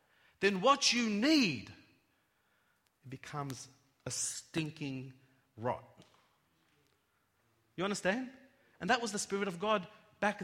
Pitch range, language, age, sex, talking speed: 150-230 Hz, English, 30-49, male, 105 wpm